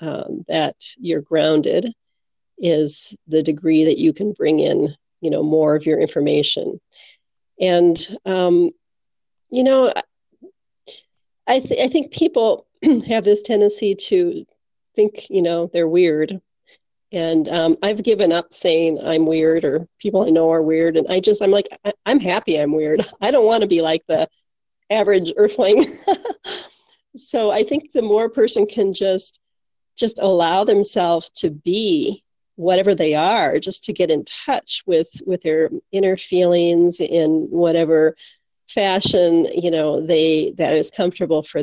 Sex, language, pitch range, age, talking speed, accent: female, English, 160-215 Hz, 40-59, 155 wpm, American